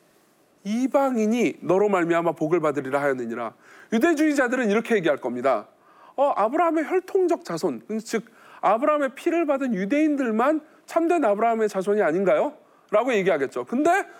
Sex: male